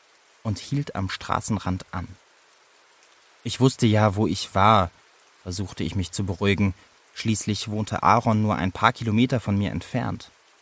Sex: male